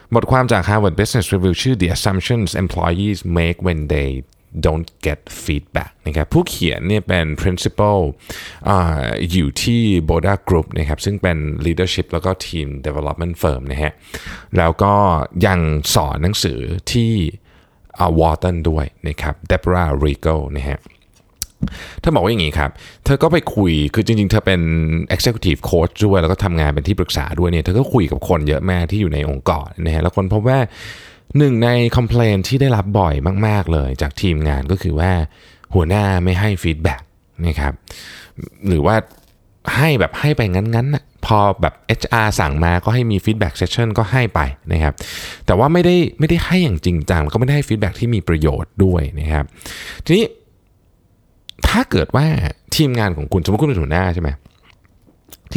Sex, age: male, 20-39